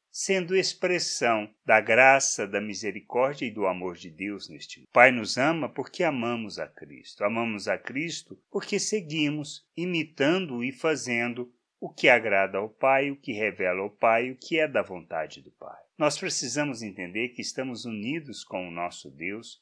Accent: Brazilian